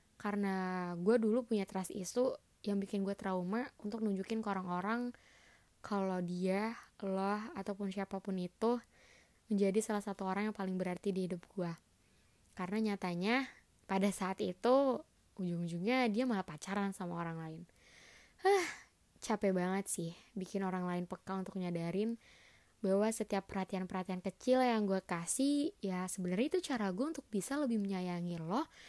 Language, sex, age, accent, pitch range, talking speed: Indonesian, female, 20-39, native, 190-235 Hz, 145 wpm